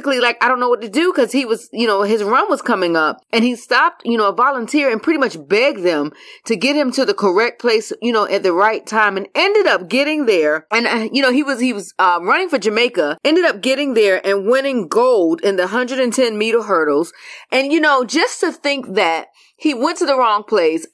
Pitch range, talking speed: 205-300 Hz, 240 wpm